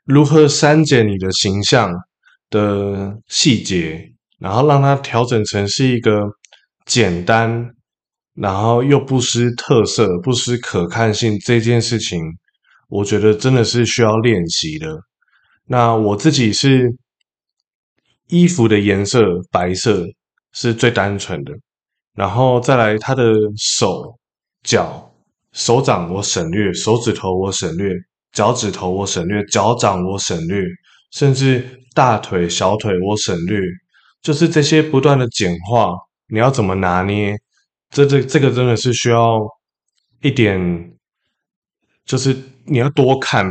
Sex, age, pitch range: male, 20-39, 100-130 Hz